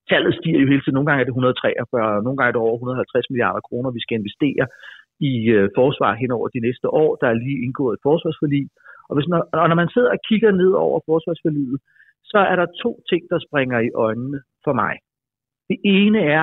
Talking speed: 215 wpm